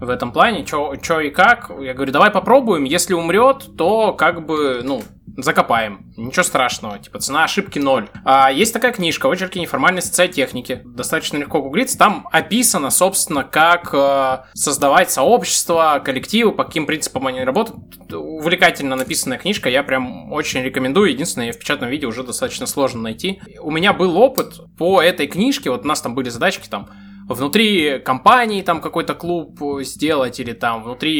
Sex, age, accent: male, 20-39, native